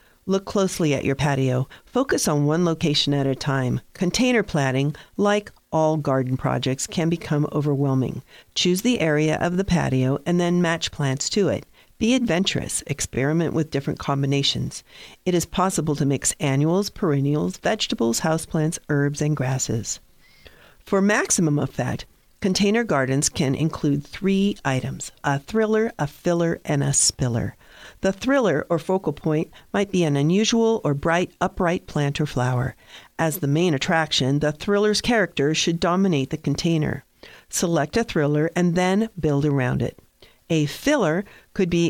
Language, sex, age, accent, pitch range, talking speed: English, female, 50-69, American, 140-185 Hz, 150 wpm